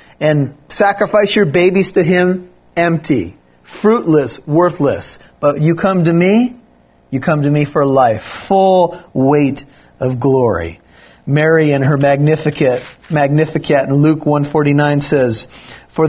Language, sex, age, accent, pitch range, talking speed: English, male, 40-59, American, 150-195 Hz, 125 wpm